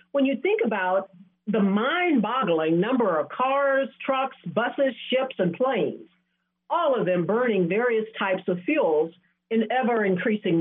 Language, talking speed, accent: English, 135 wpm, American